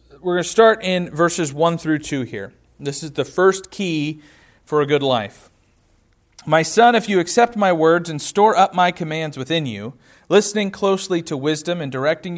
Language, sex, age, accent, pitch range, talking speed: English, male, 40-59, American, 130-175 Hz, 190 wpm